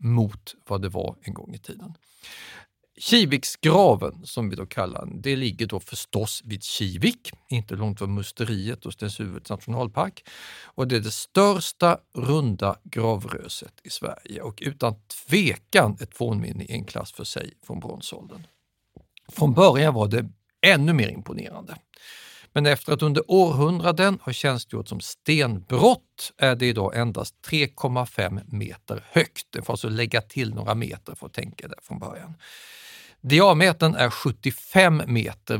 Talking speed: 145 wpm